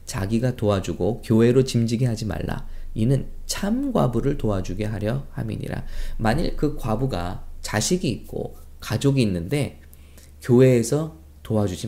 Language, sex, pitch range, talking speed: English, male, 90-140 Hz, 105 wpm